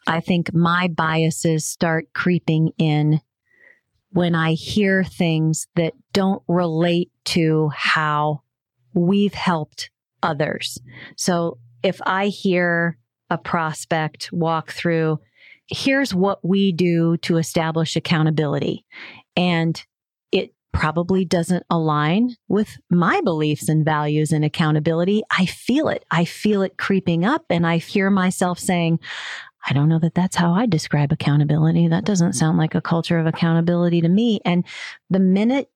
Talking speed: 135 wpm